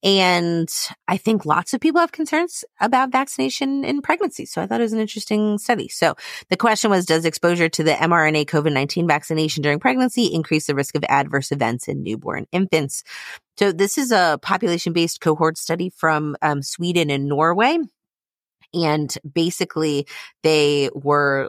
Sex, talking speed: female, 160 wpm